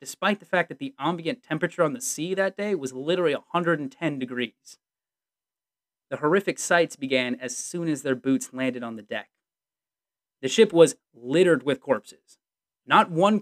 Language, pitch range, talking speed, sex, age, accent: English, 140-200 Hz, 165 wpm, male, 30-49, American